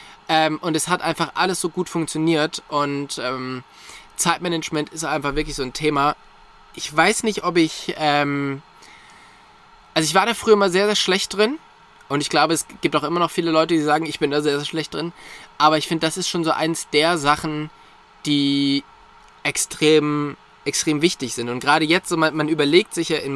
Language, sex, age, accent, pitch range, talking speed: German, male, 20-39, German, 145-185 Hz, 200 wpm